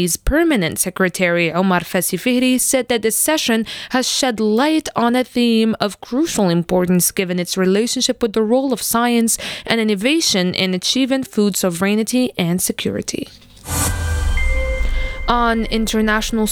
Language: French